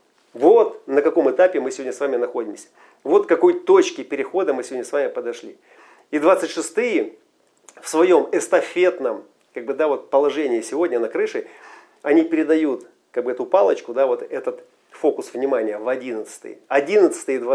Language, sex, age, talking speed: Russian, male, 40-59, 155 wpm